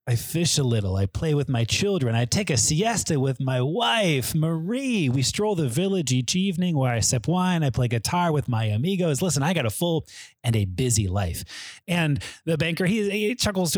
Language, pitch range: English, 125-180 Hz